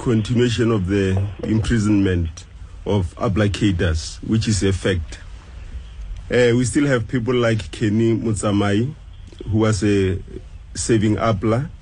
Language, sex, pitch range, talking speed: English, male, 90-115 Hz, 120 wpm